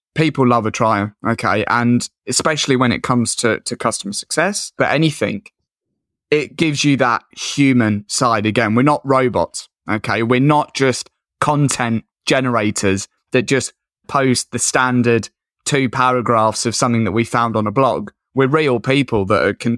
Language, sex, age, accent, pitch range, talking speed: English, male, 20-39, British, 115-140 Hz, 160 wpm